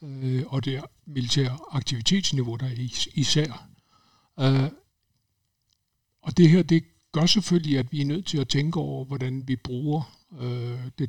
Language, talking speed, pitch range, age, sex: Danish, 140 wpm, 120-145 Hz, 60-79, male